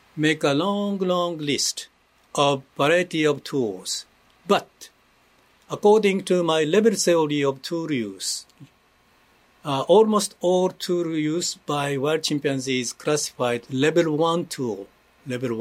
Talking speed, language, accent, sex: 120 wpm, English, Japanese, male